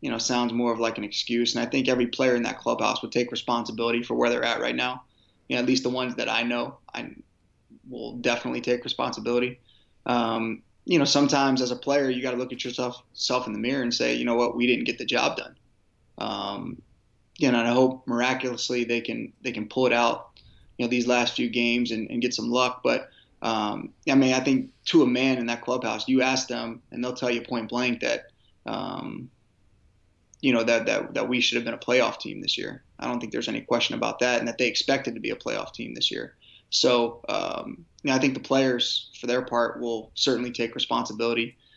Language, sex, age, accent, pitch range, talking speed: English, male, 20-39, American, 115-130 Hz, 235 wpm